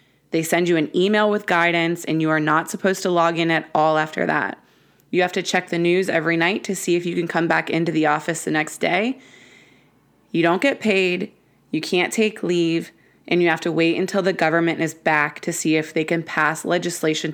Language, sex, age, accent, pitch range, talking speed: English, female, 20-39, American, 160-185 Hz, 225 wpm